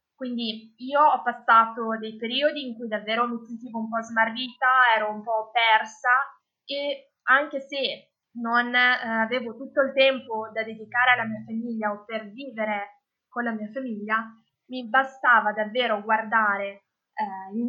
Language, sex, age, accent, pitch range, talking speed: Italian, female, 20-39, native, 215-255 Hz, 145 wpm